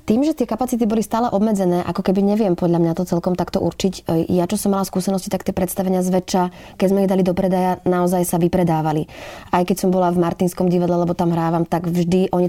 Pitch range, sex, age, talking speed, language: 170-190 Hz, female, 20-39, 225 wpm, Slovak